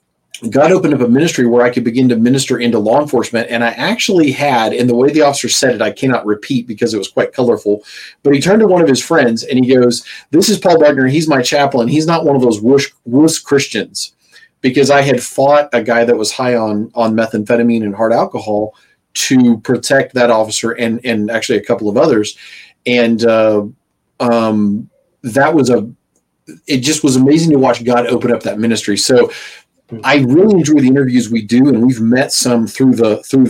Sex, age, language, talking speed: male, 40-59, English, 210 wpm